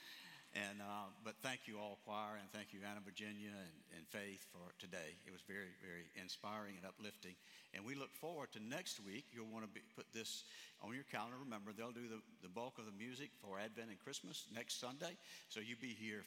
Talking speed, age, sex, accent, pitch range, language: 215 wpm, 60-79, male, American, 100-115 Hz, English